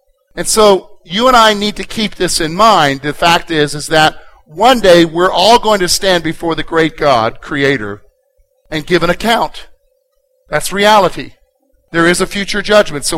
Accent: American